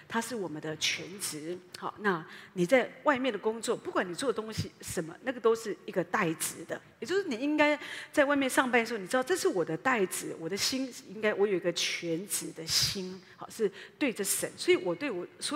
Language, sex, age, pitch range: Chinese, female, 40-59, 180-265 Hz